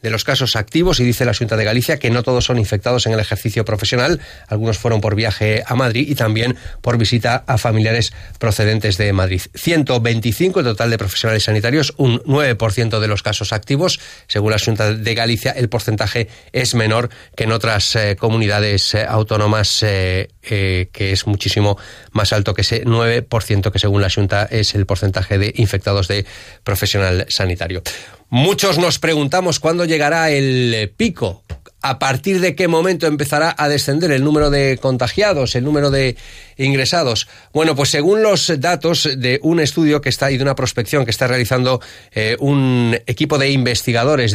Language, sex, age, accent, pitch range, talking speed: Spanish, male, 30-49, Spanish, 105-140 Hz, 175 wpm